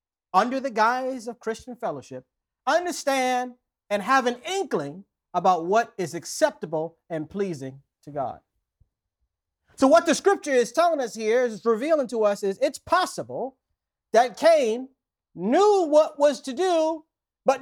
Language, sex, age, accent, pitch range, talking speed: English, male, 40-59, American, 170-265 Hz, 145 wpm